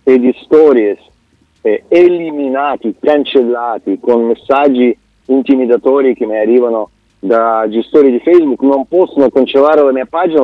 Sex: male